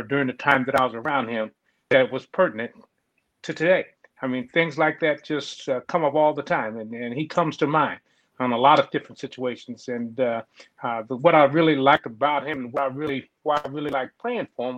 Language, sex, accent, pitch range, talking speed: English, male, American, 130-155 Hz, 220 wpm